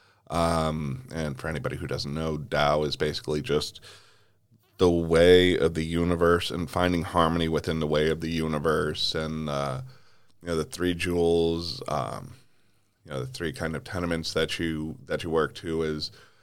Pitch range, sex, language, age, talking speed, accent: 85-105 Hz, male, English, 30-49, 170 wpm, American